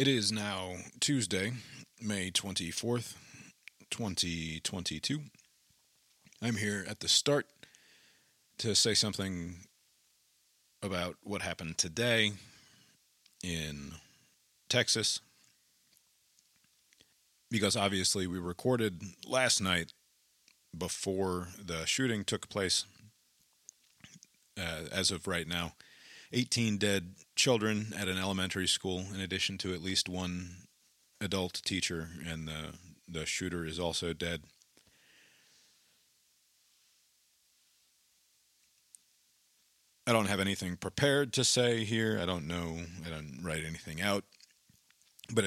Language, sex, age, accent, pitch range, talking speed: English, male, 40-59, American, 85-105 Hz, 100 wpm